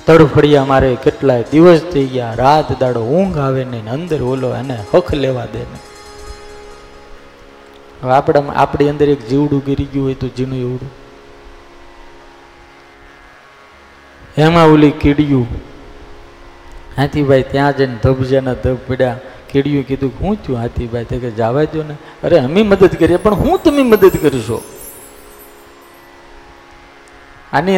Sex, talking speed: male, 80 wpm